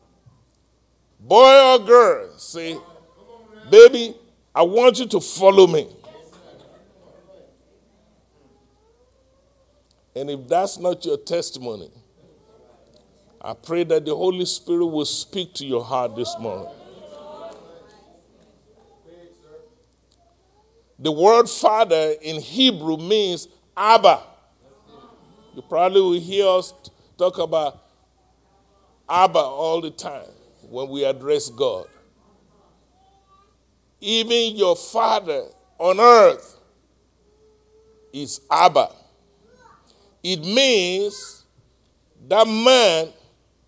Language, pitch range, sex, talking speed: English, 160-270 Hz, male, 85 wpm